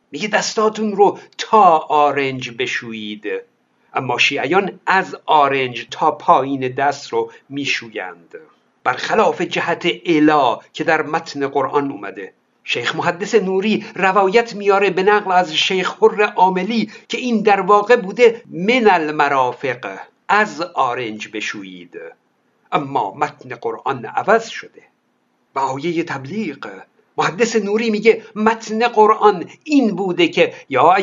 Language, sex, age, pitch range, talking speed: Persian, male, 60-79, 170-225 Hz, 115 wpm